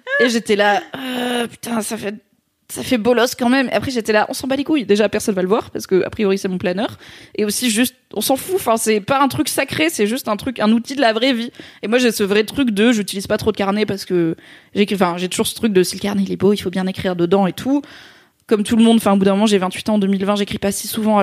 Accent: French